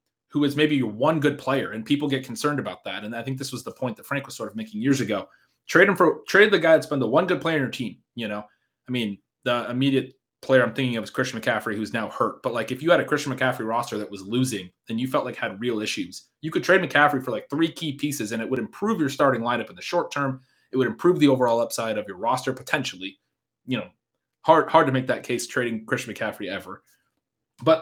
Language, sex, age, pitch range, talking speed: English, male, 20-39, 115-145 Hz, 260 wpm